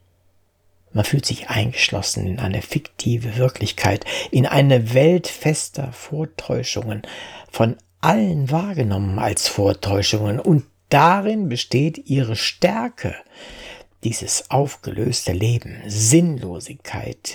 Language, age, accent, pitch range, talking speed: German, 60-79, German, 105-160 Hz, 95 wpm